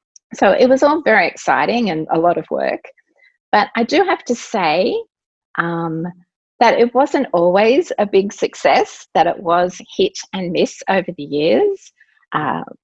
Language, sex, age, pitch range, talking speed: English, female, 30-49, 165-235 Hz, 165 wpm